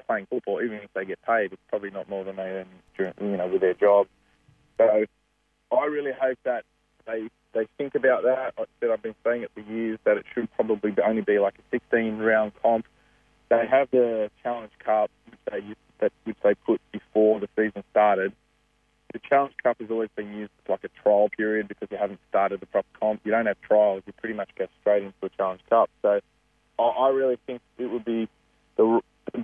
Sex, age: male, 30-49